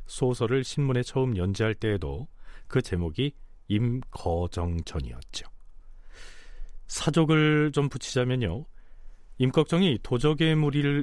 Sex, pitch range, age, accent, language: male, 90-145 Hz, 40-59, native, Korean